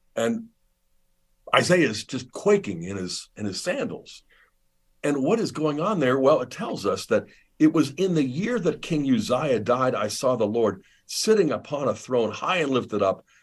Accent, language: American, English